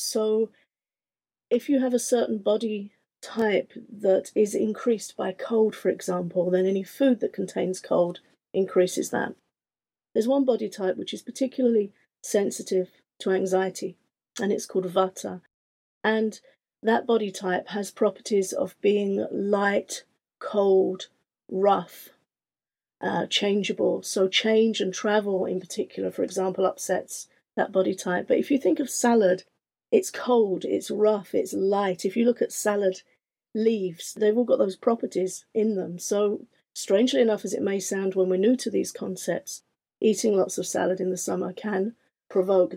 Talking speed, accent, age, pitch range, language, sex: 155 wpm, British, 40-59, 190-225 Hz, English, female